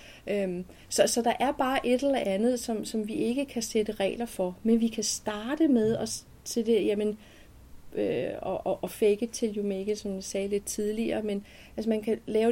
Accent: native